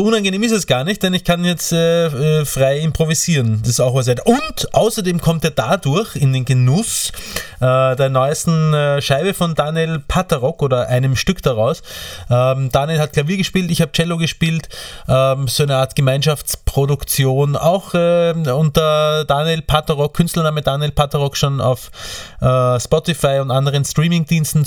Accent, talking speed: Austrian, 155 wpm